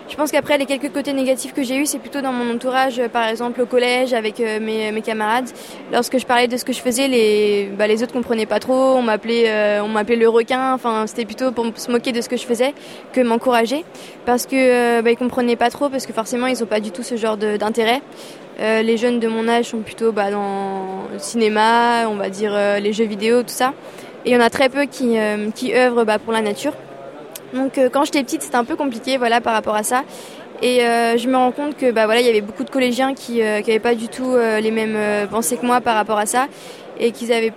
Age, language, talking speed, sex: 20-39, French, 260 wpm, female